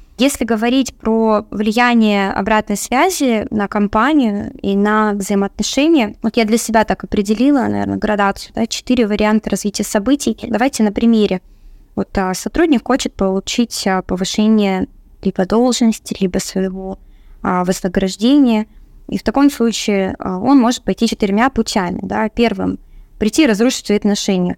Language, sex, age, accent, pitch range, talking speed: Russian, female, 20-39, native, 200-240 Hz, 130 wpm